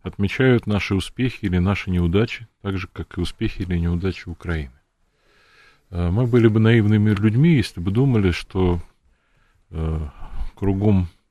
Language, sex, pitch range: Russian, male, 85-110 Hz